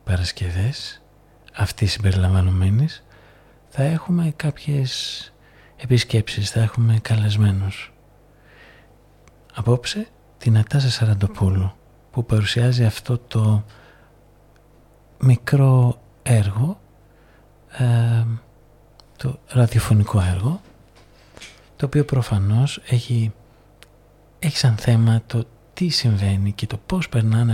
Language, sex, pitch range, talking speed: Greek, male, 105-130 Hz, 80 wpm